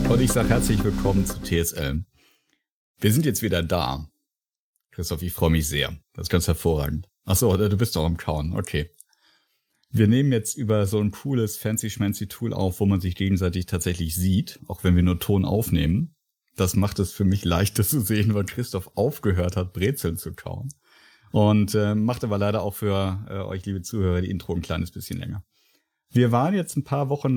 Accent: German